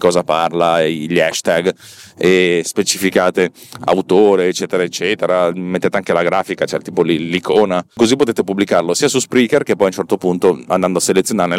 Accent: native